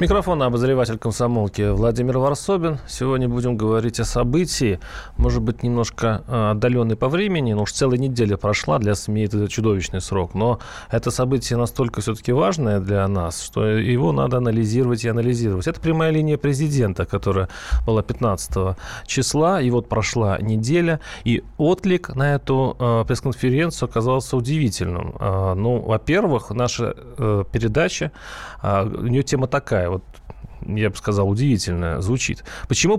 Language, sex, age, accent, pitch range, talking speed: Russian, male, 30-49, native, 110-140 Hz, 135 wpm